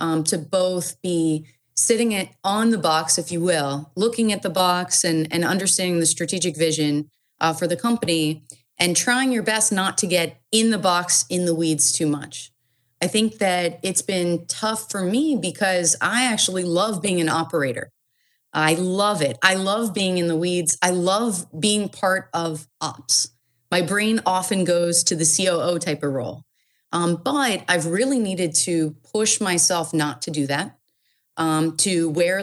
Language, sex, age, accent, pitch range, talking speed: English, female, 30-49, American, 160-195 Hz, 175 wpm